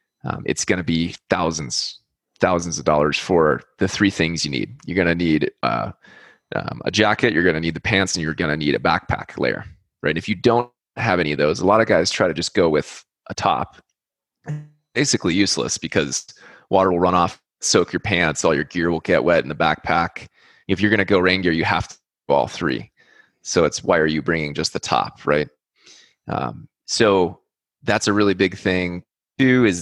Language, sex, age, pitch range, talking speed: English, male, 20-39, 85-105 Hz, 210 wpm